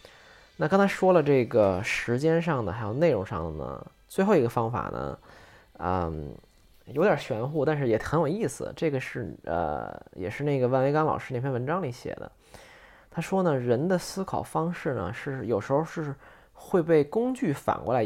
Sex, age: male, 20-39